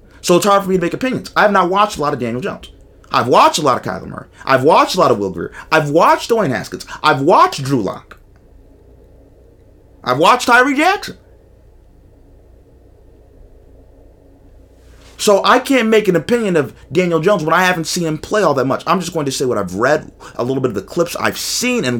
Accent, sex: American, male